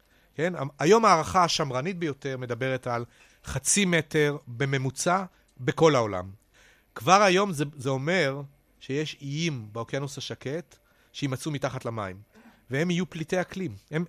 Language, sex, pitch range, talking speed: Hebrew, male, 130-180 Hz, 125 wpm